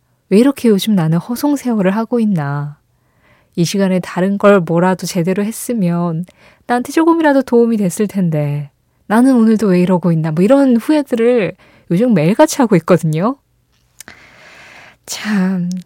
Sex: female